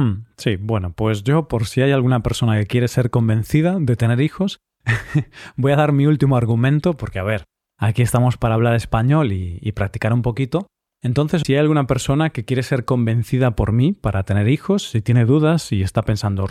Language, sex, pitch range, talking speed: Spanish, male, 110-140 Hz, 205 wpm